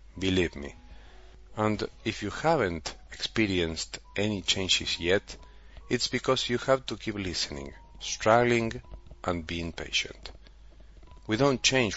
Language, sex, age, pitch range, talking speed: English, male, 40-59, 80-115 Hz, 120 wpm